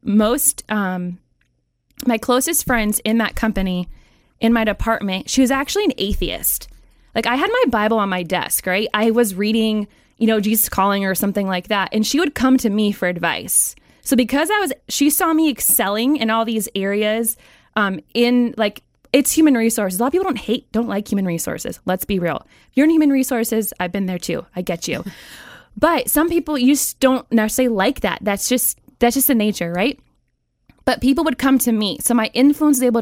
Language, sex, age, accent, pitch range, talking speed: English, female, 20-39, American, 200-255 Hz, 205 wpm